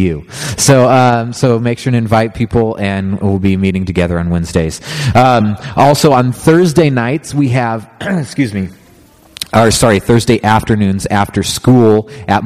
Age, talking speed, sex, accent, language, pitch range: 30-49, 150 wpm, male, American, English, 105-125 Hz